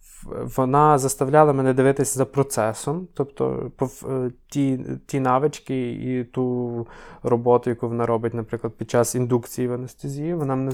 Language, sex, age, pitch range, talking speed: Ukrainian, male, 20-39, 120-150 Hz, 135 wpm